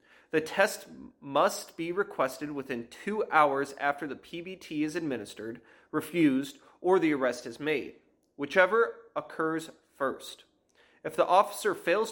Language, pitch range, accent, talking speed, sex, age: English, 135-185 Hz, American, 130 wpm, male, 30-49